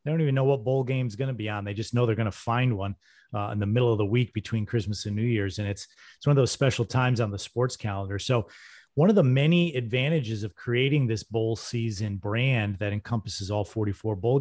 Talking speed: 255 wpm